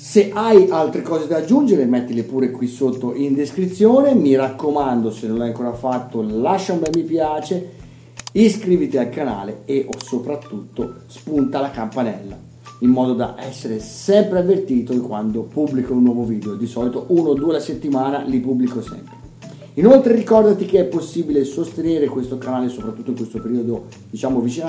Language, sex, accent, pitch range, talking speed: Italian, male, native, 125-170 Hz, 165 wpm